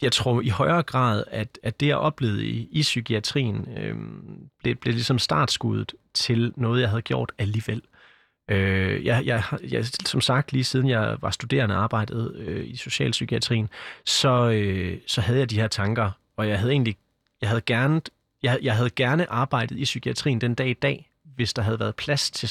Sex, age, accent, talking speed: male, 30-49, native, 190 wpm